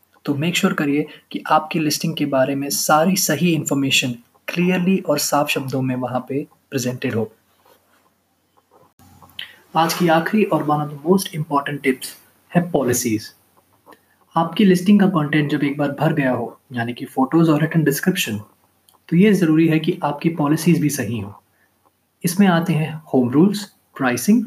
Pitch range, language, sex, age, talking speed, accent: 130-170 Hz, Hindi, male, 20-39, 160 wpm, native